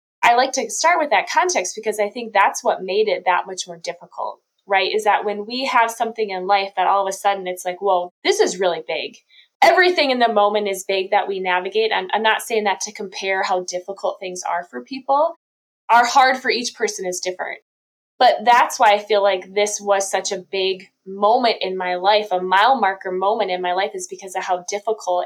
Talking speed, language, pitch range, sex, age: 225 wpm, English, 190-235 Hz, female, 20-39